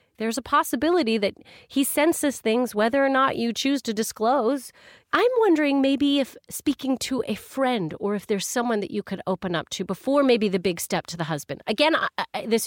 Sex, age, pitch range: female, 40-59, 175-245 Hz